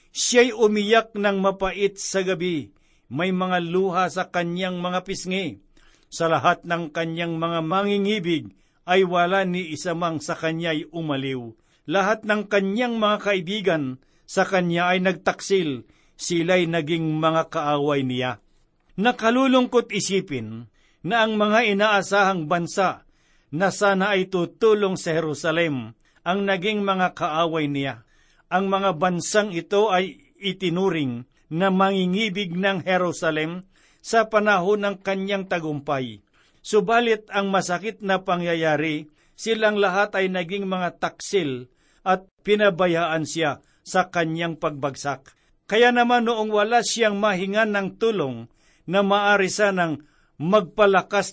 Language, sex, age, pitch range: Filipino, male, 50-69, 165-200 Hz